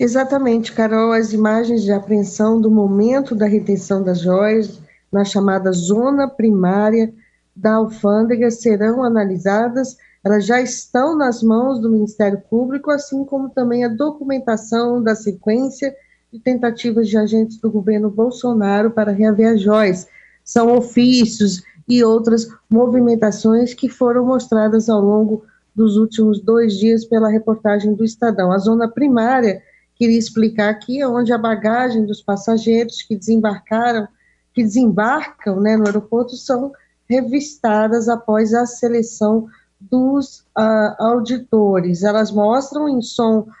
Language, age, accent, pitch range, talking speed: Portuguese, 20-39, Brazilian, 215-245 Hz, 130 wpm